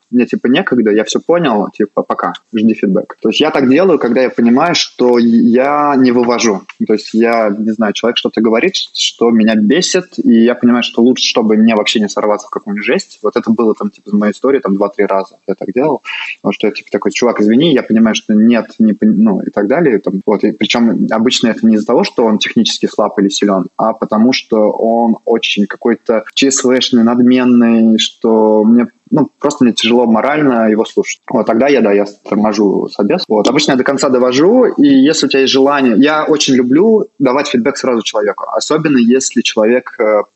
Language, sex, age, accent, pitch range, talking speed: Russian, male, 20-39, native, 110-130 Hz, 205 wpm